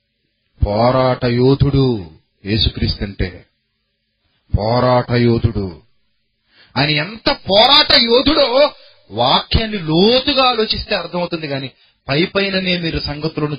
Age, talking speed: 30-49, 80 wpm